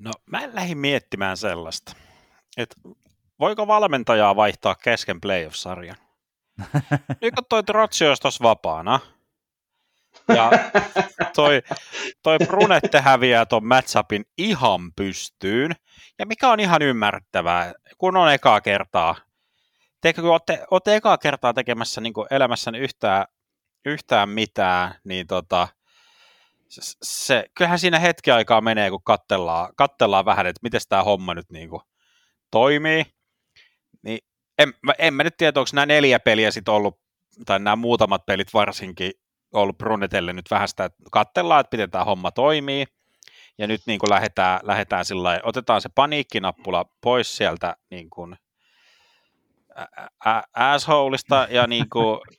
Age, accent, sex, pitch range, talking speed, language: 30-49, native, male, 100-160 Hz, 125 wpm, Finnish